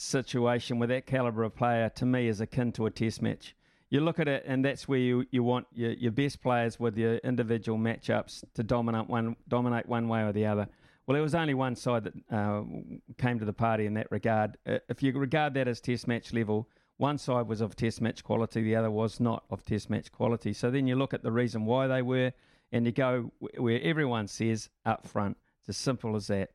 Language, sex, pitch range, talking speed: English, male, 110-130 Hz, 235 wpm